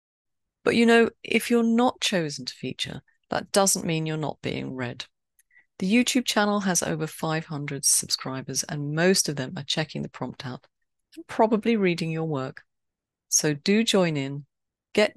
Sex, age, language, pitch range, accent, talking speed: female, 40-59, English, 130-195 Hz, British, 165 wpm